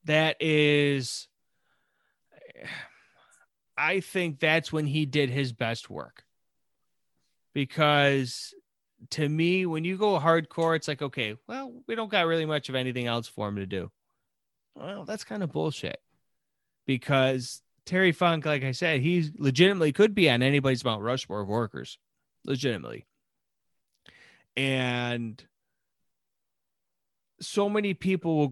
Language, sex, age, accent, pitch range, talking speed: English, male, 30-49, American, 125-165 Hz, 130 wpm